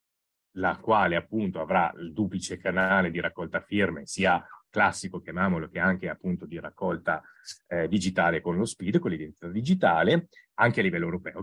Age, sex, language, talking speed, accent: 30-49, male, Italian, 160 wpm, native